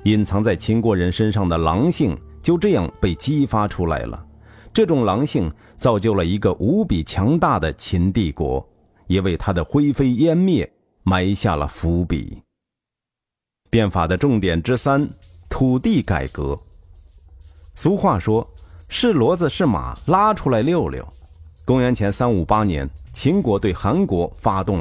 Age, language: 50-69, Chinese